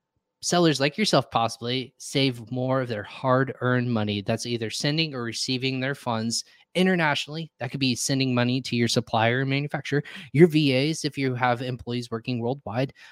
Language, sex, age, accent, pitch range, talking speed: English, male, 20-39, American, 115-145 Hz, 160 wpm